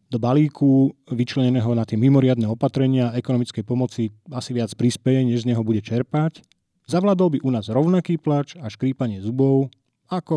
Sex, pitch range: male, 115-150 Hz